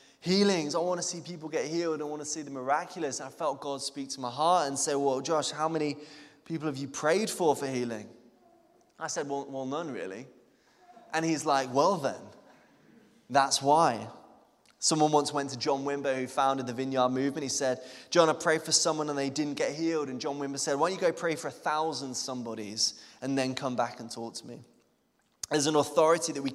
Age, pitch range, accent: 20-39, 125-150 Hz, British